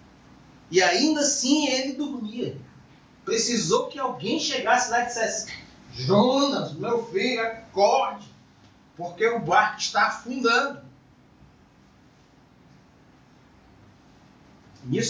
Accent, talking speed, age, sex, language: Brazilian, 85 wpm, 30-49, male, Portuguese